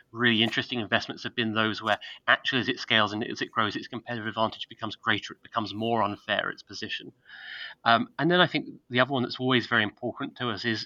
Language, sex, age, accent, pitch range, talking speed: English, male, 30-49, British, 110-120 Hz, 225 wpm